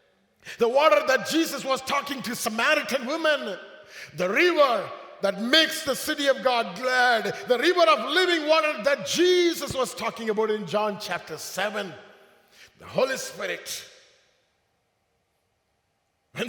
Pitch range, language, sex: 185-310 Hz, English, male